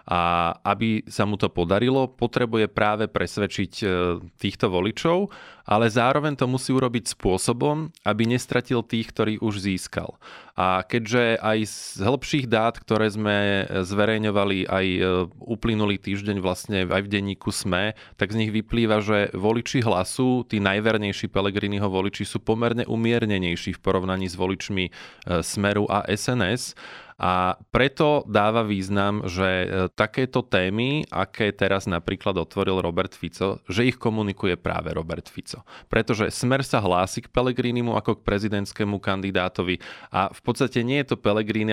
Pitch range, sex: 95-120 Hz, male